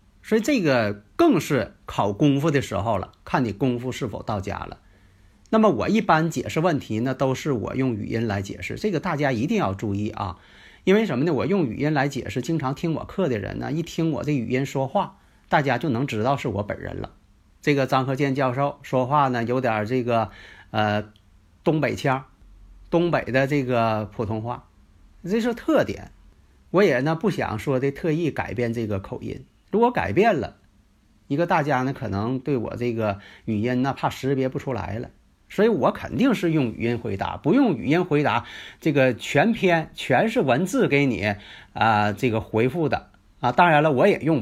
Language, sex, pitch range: Chinese, male, 105-145 Hz